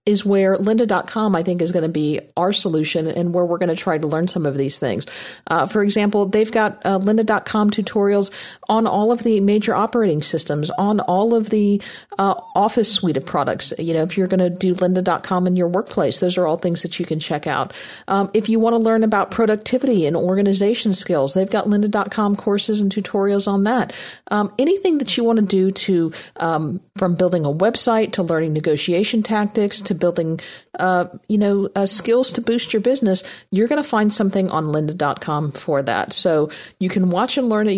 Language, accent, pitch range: English, American, 165-210 Hz